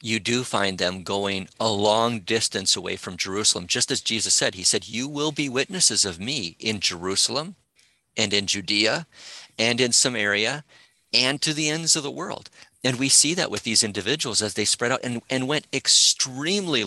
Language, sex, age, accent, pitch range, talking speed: English, male, 50-69, American, 105-130 Hz, 190 wpm